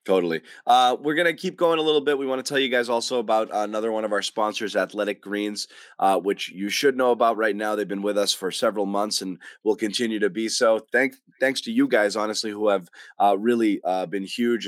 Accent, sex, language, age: American, male, English, 30-49